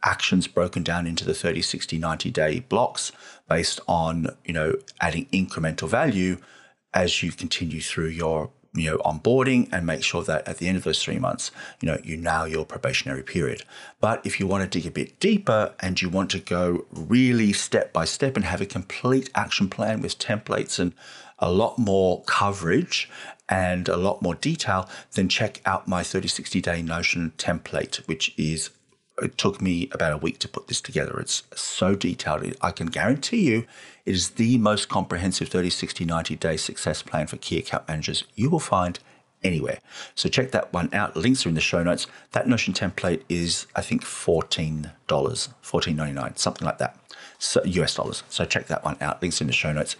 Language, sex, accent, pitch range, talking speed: English, male, Australian, 80-105 Hz, 190 wpm